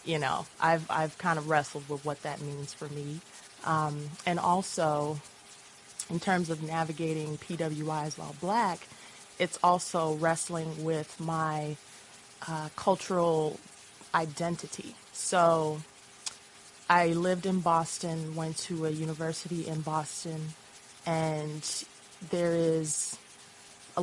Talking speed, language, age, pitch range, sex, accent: 115 wpm, English, 20-39, 150-165 Hz, female, American